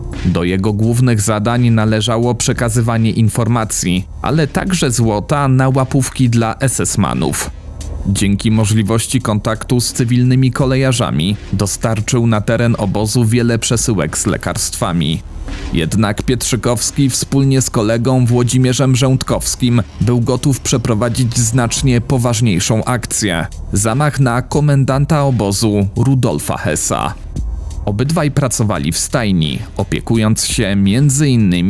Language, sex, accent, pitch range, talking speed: Polish, male, native, 105-130 Hz, 100 wpm